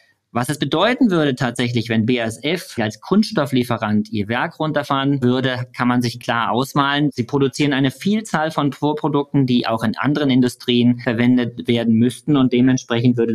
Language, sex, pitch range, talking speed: German, male, 120-145 Hz, 155 wpm